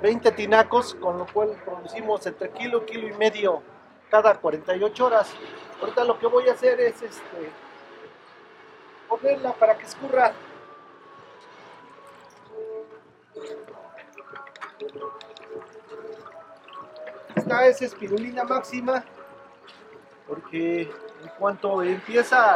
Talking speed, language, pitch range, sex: 90 wpm, Spanish, 205-275 Hz, male